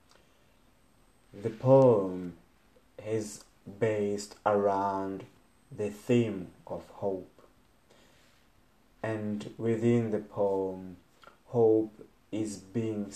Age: 30-49